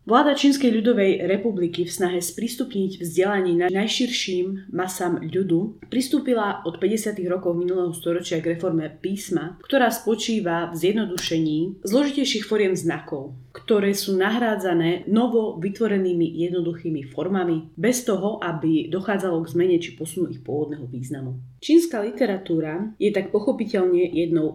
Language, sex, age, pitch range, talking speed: Slovak, female, 30-49, 170-220 Hz, 125 wpm